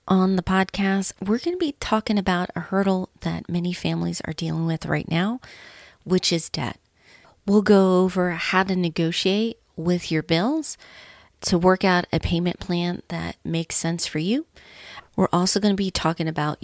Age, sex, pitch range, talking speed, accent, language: 30-49, female, 170-215 Hz, 175 wpm, American, English